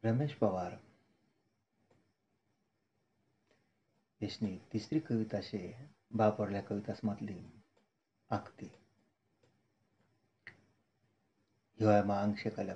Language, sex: Marathi, male